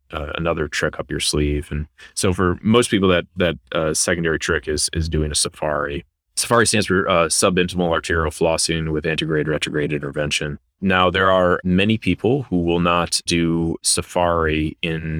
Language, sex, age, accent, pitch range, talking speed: English, male, 30-49, American, 75-85 Hz, 170 wpm